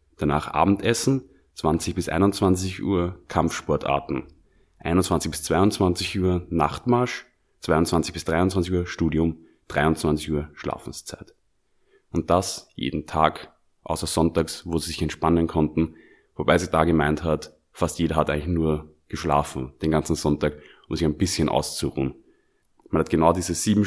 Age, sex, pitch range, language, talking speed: 30-49, male, 80-95 Hz, German, 140 wpm